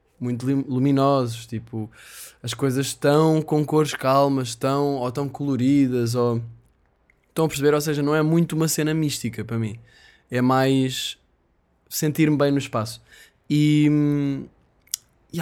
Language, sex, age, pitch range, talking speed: Portuguese, male, 20-39, 115-145 Hz, 135 wpm